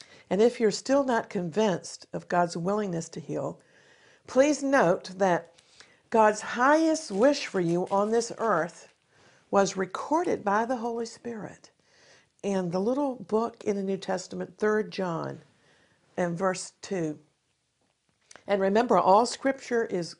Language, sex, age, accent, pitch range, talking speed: English, female, 50-69, American, 175-220 Hz, 135 wpm